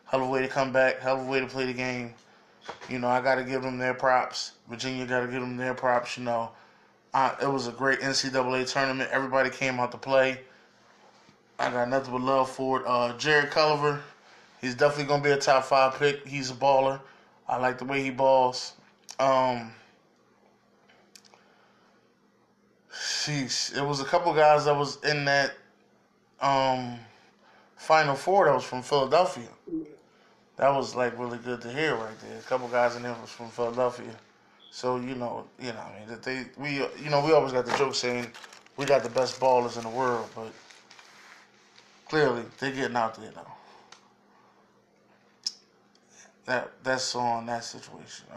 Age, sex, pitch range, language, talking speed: 20-39, male, 120-135 Hz, English, 180 wpm